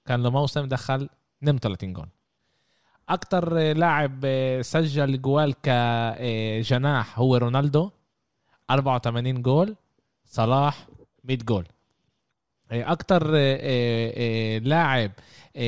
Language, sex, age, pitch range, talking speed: Arabic, male, 20-39, 115-150 Hz, 75 wpm